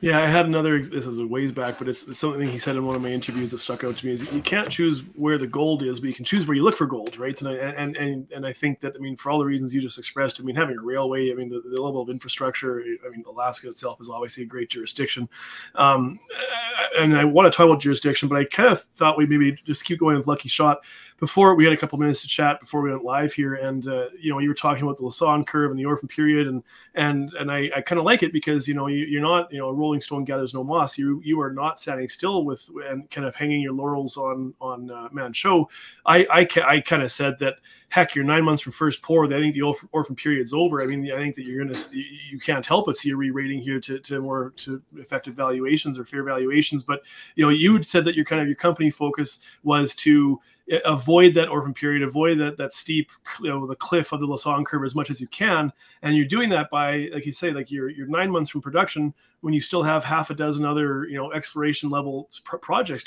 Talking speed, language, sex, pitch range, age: 265 wpm, English, male, 135-155 Hz, 30-49